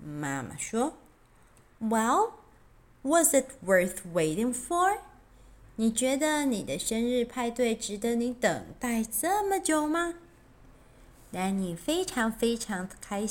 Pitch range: 205-310 Hz